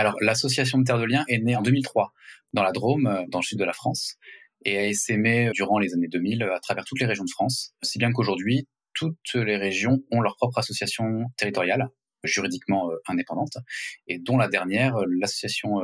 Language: French